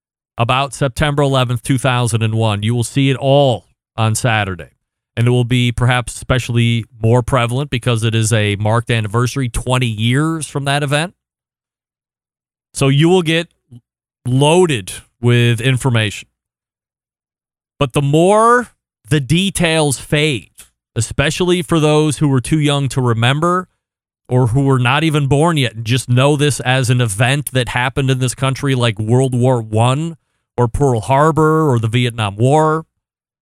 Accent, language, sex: American, English, male